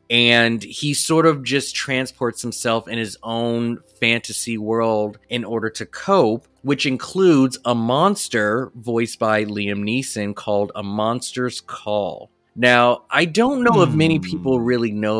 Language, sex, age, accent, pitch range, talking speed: English, male, 20-39, American, 110-135 Hz, 145 wpm